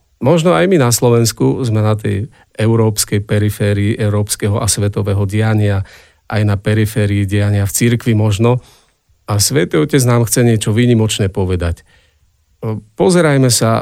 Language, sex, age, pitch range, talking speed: Slovak, male, 40-59, 95-115 Hz, 135 wpm